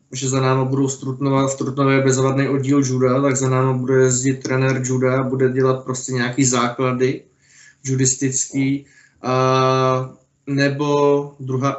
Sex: male